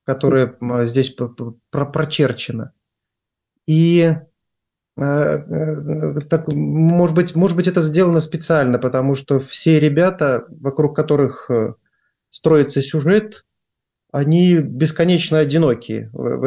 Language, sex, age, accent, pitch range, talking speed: Russian, male, 30-49, native, 135-165 Hz, 100 wpm